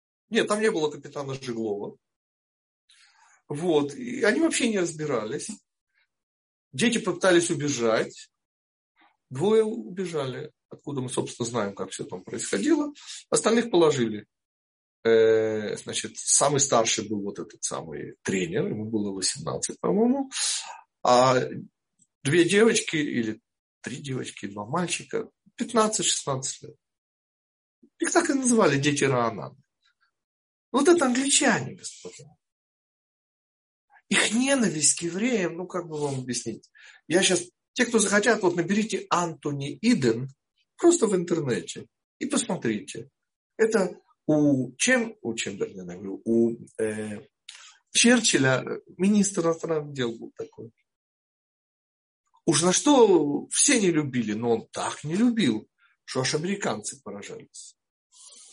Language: Russian